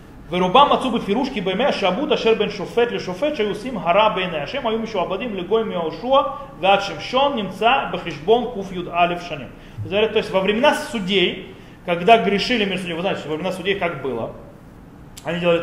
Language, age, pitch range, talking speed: Russian, 30-49, 175-225 Hz, 75 wpm